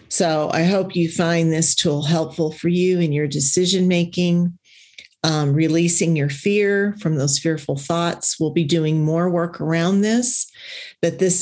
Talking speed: 150 wpm